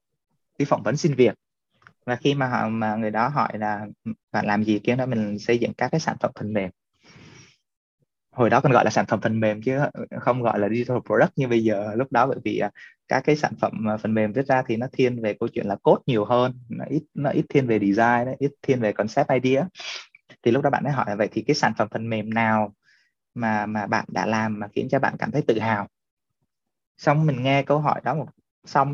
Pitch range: 110-145 Hz